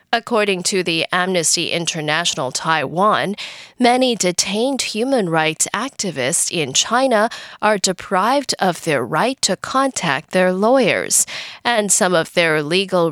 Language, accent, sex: English, American, female